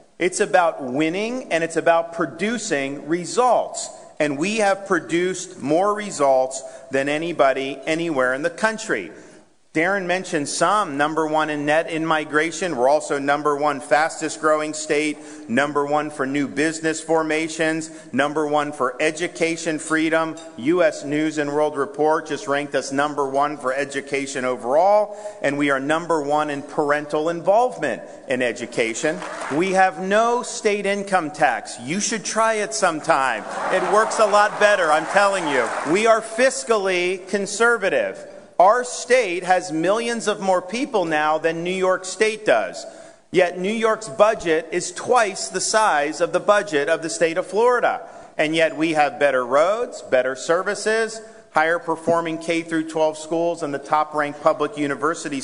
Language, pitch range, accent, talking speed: English, 150-205 Hz, American, 155 wpm